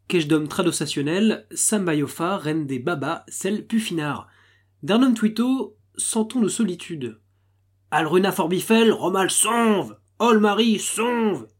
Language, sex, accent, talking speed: French, male, French, 120 wpm